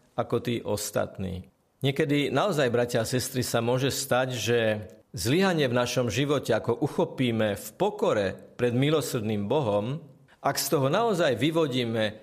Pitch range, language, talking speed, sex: 115-145 Hz, Slovak, 135 wpm, male